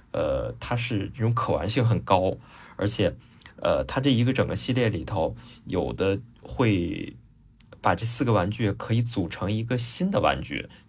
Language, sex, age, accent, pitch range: Chinese, male, 20-39, native, 95-115 Hz